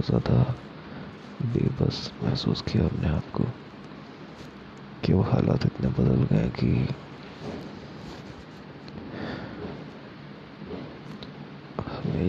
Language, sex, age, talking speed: Hindi, male, 20-39, 55 wpm